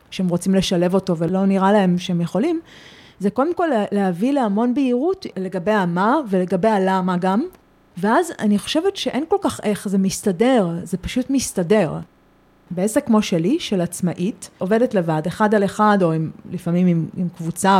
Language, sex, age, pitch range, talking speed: Hebrew, female, 30-49, 180-220 Hz, 160 wpm